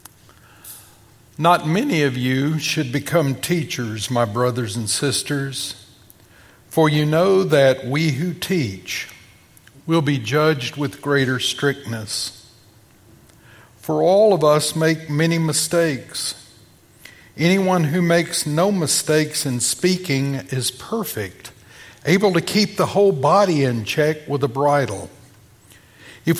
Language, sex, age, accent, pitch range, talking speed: English, male, 50-69, American, 120-175 Hz, 120 wpm